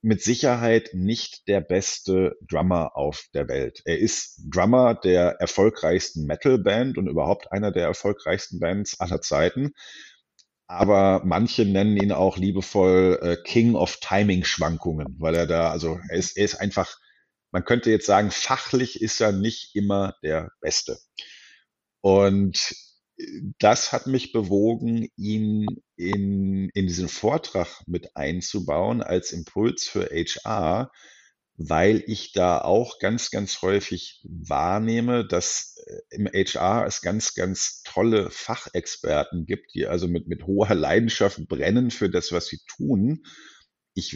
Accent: German